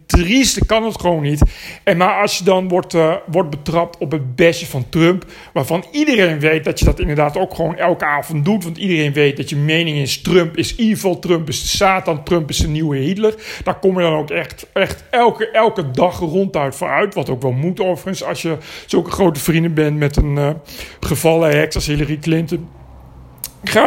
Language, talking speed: Dutch, 205 wpm